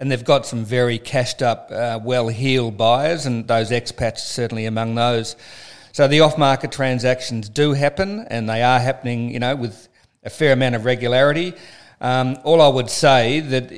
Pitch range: 115-135 Hz